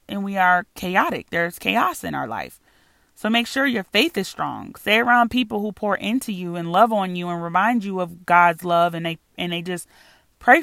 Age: 30-49